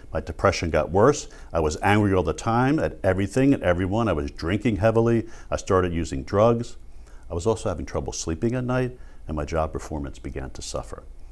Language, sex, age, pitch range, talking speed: English, male, 60-79, 80-105 Hz, 195 wpm